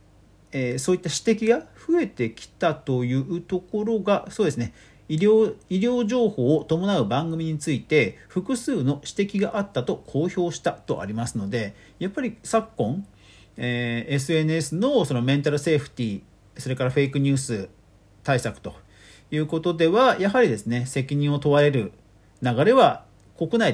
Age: 40-59